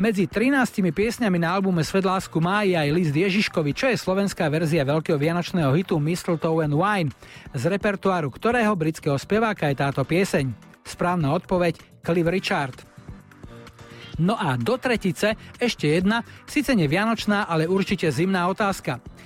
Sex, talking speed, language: male, 135 wpm, Slovak